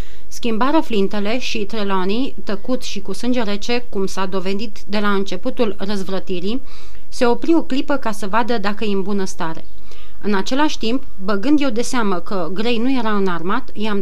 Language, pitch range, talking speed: Romanian, 200-245 Hz, 175 wpm